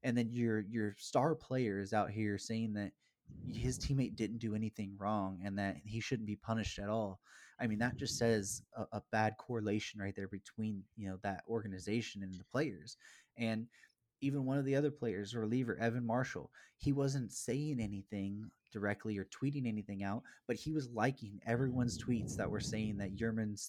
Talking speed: 185 wpm